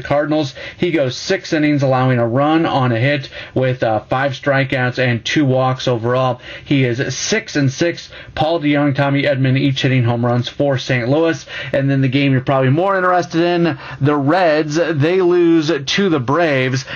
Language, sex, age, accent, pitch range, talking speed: English, male, 30-49, American, 130-160 Hz, 175 wpm